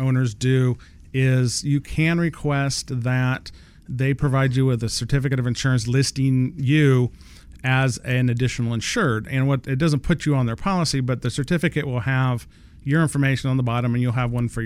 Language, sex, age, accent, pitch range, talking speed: English, male, 40-59, American, 115-140 Hz, 185 wpm